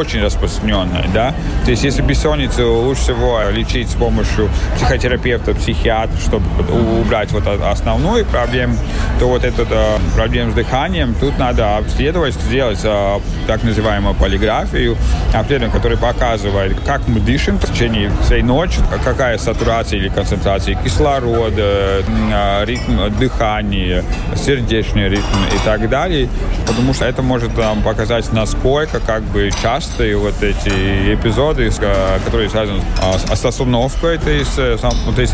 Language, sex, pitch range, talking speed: Russian, male, 100-120 Hz, 130 wpm